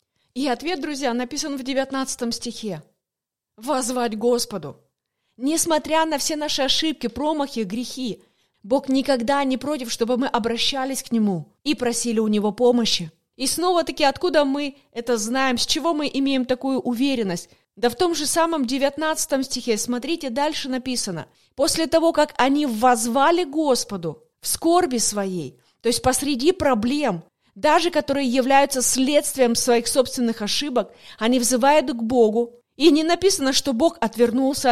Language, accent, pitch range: Russian, native, 235-300 Hz